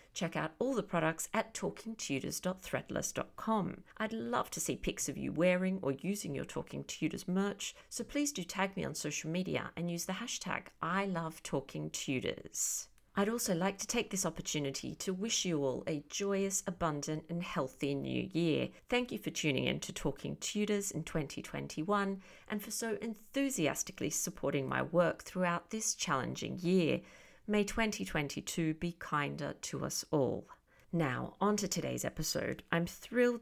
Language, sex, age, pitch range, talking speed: English, female, 40-59, 160-210 Hz, 155 wpm